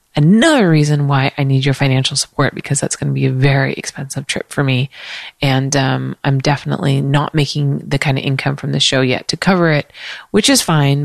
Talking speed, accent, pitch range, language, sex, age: 210 wpm, American, 140-185 Hz, English, female, 30-49